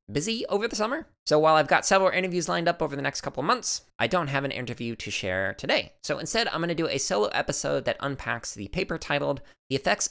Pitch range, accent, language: 110-170 Hz, American, English